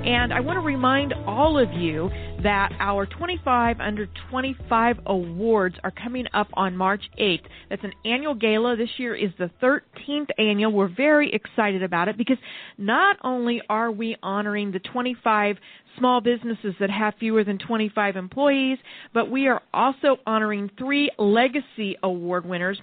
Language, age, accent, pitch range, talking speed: English, 40-59, American, 195-250 Hz, 160 wpm